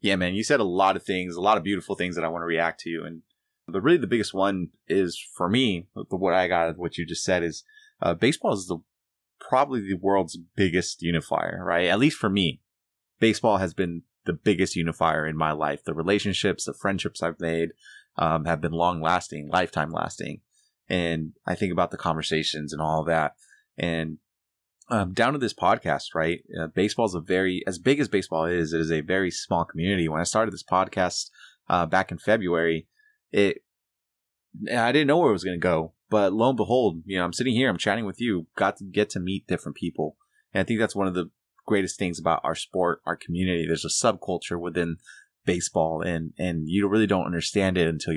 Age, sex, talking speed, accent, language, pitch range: 20-39, male, 215 wpm, American, English, 80-100 Hz